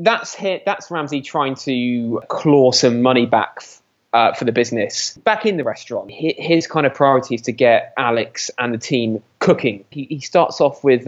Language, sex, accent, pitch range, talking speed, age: English, male, British, 115-145 Hz, 195 wpm, 20-39